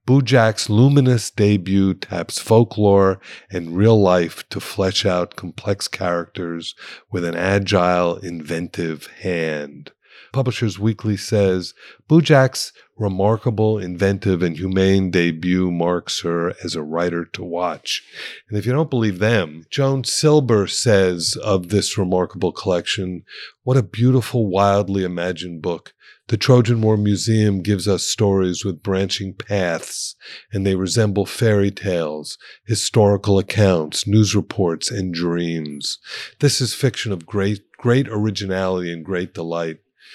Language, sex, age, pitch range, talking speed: English, male, 50-69, 90-110 Hz, 125 wpm